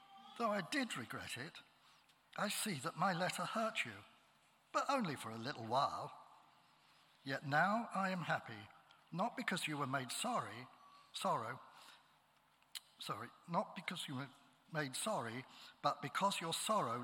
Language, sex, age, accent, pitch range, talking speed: English, male, 60-79, British, 140-210 Hz, 145 wpm